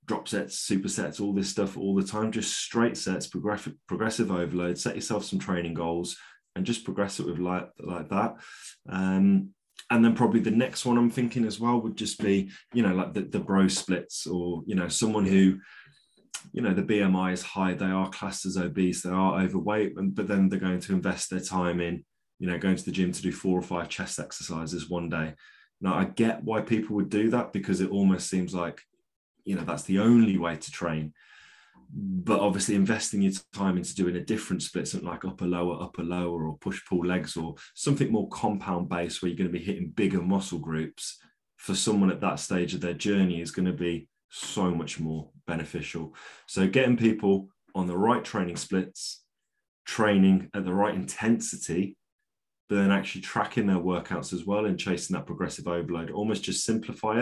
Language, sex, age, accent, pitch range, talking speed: English, male, 20-39, British, 90-105 Hz, 200 wpm